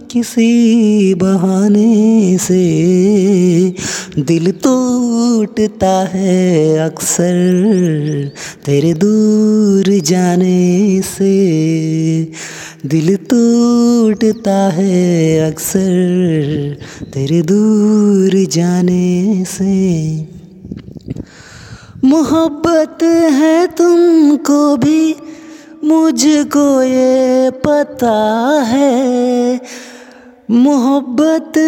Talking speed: 55 wpm